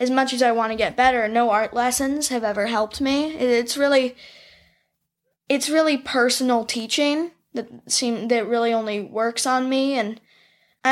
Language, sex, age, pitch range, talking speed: English, female, 10-29, 215-260 Hz, 170 wpm